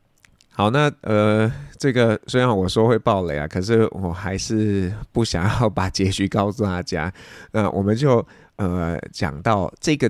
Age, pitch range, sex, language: 20-39, 90-115 Hz, male, Chinese